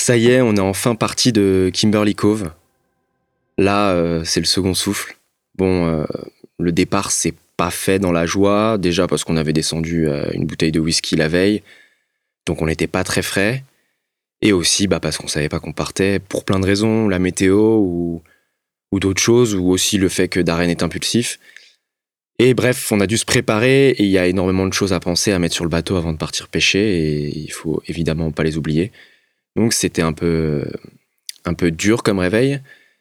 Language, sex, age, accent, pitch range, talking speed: French, male, 20-39, French, 80-100 Hz, 205 wpm